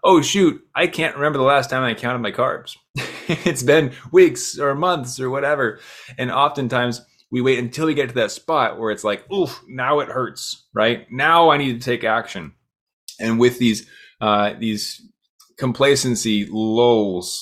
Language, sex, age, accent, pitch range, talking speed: English, male, 20-39, American, 110-140 Hz, 170 wpm